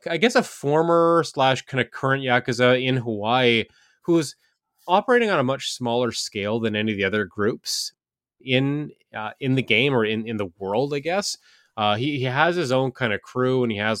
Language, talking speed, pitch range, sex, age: English, 205 wpm, 105-130 Hz, male, 30-49